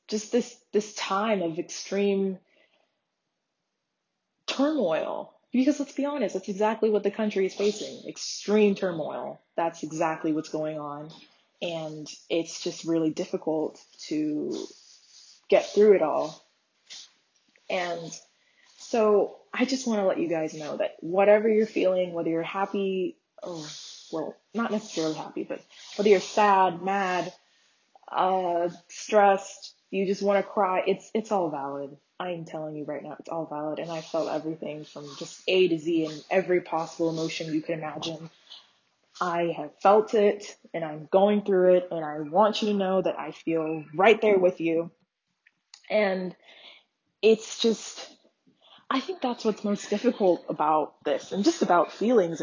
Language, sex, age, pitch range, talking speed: English, female, 20-39, 165-215 Hz, 155 wpm